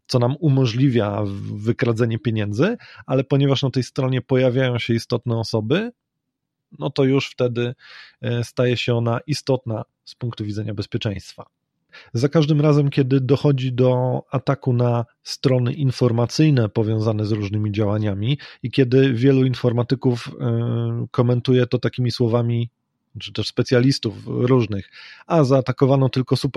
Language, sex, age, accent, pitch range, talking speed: Polish, male, 30-49, native, 115-135 Hz, 125 wpm